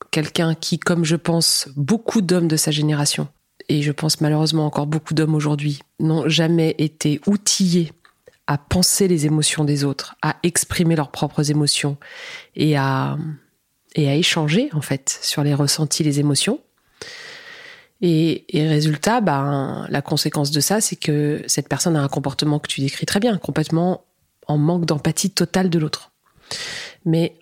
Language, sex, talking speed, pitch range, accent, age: French, female, 160 wpm, 150-190 Hz, French, 30-49